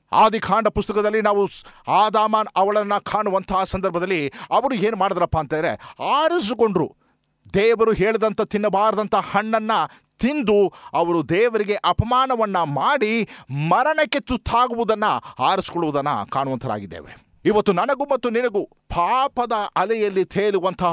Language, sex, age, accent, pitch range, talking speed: Kannada, male, 50-69, native, 175-230 Hz, 90 wpm